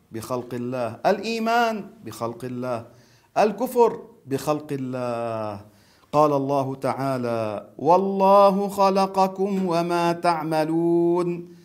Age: 50-69